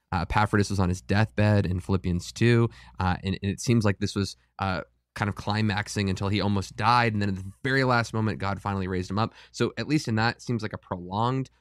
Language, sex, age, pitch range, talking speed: English, male, 20-39, 95-110 Hz, 245 wpm